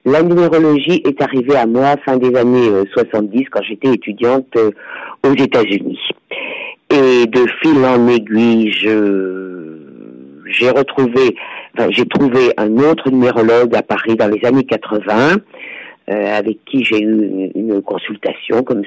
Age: 50-69